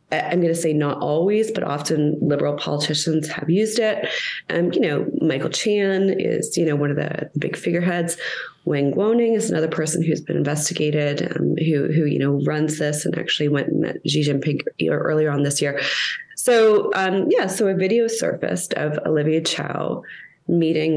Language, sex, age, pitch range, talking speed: English, female, 20-39, 150-170 Hz, 180 wpm